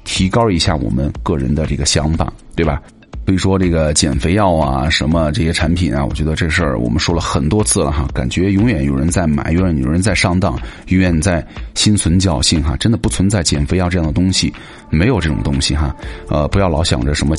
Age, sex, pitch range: 30-49, male, 80-105 Hz